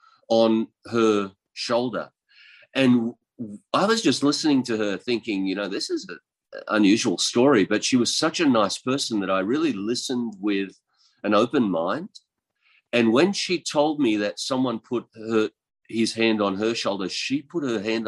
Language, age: English, 50-69